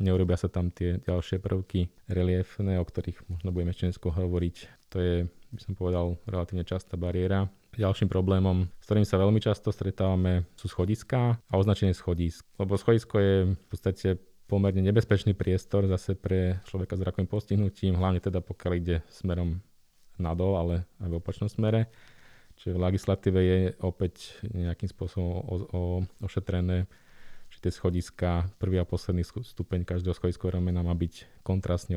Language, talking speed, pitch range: Slovak, 155 wpm, 90-100 Hz